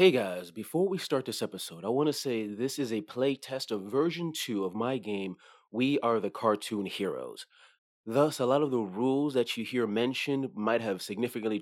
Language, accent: English, American